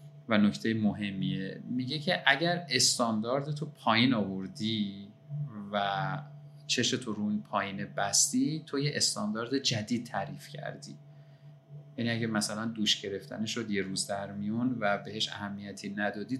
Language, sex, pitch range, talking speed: Persian, male, 110-150 Hz, 130 wpm